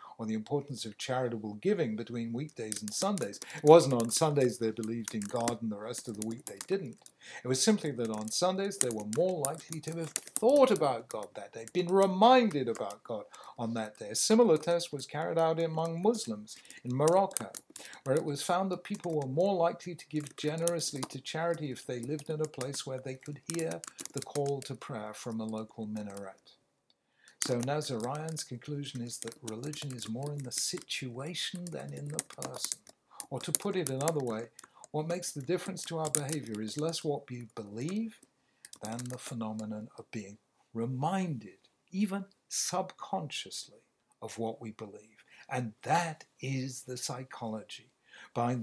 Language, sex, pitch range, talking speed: English, male, 115-165 Hz, 175 wpm